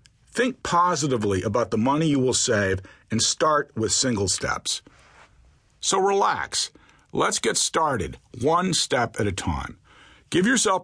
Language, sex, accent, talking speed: English, male, American, 140 wpm